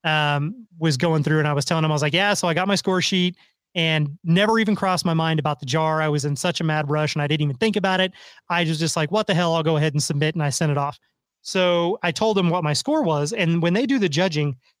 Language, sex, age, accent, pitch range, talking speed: English, male, 30-49, American, 155-180 Hz, 290 wpm